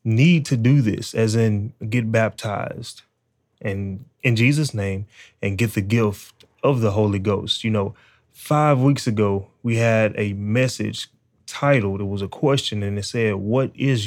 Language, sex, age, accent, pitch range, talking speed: English, male, 20-39, American, 110-130 Hz, 160 wpm